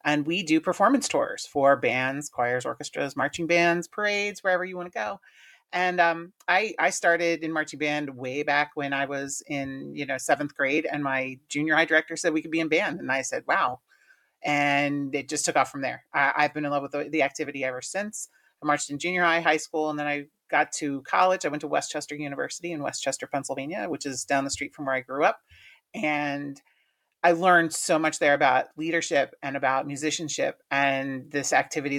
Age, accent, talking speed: 30-49, American, 210 wpm